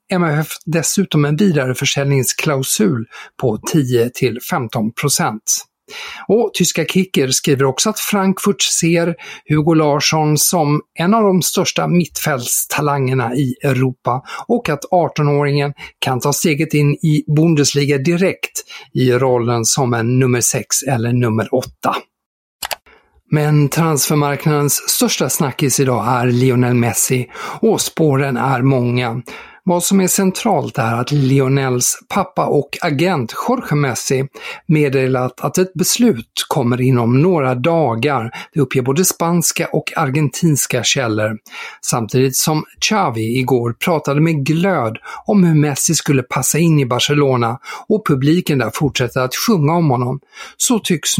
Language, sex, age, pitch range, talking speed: Swedish, male, 50-69, 130-170 Hz, 125 wpm